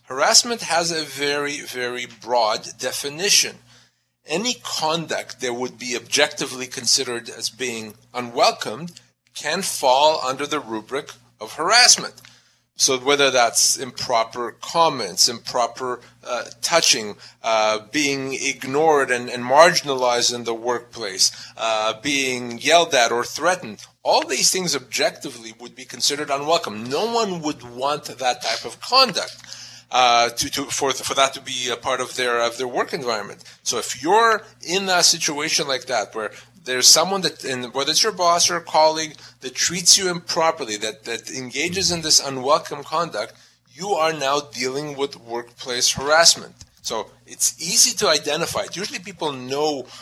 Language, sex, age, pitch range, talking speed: English, male, 40-59, 125-160 Hz, 150 wpm